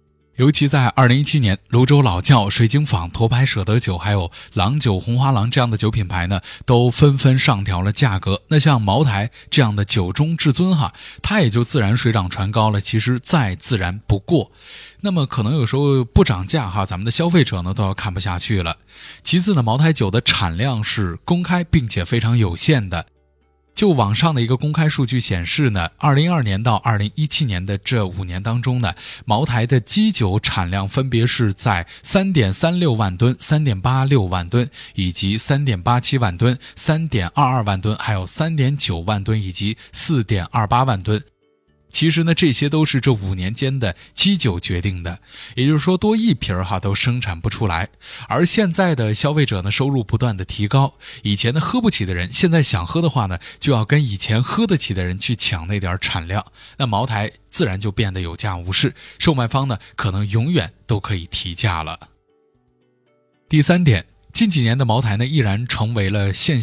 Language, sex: Chinese, male